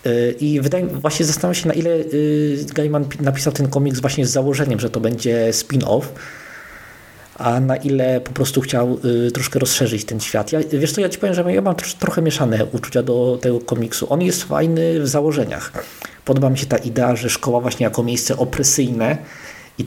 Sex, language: male, Polish